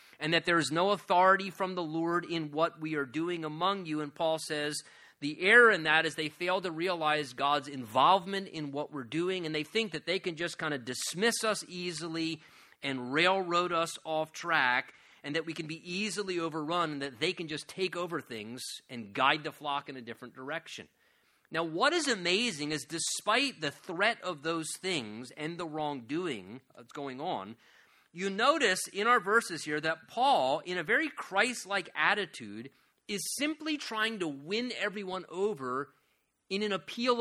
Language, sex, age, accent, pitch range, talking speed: English, male, 30-49, American, 155-205 Hz, 185 wpm